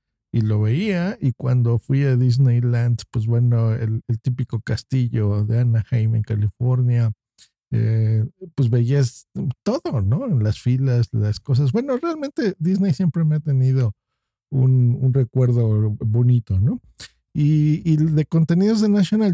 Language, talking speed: Spanish, 145 wpm